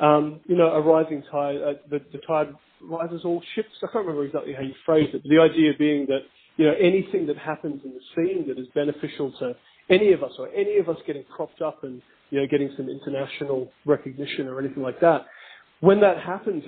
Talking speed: 220 wpm